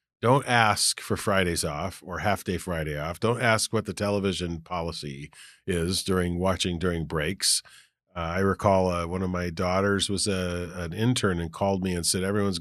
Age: 40-59